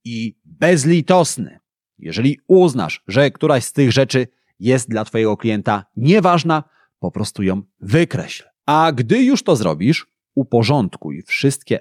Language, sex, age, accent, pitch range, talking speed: Polish, male, 30-49, native, 110-165 Hz, 125 wpm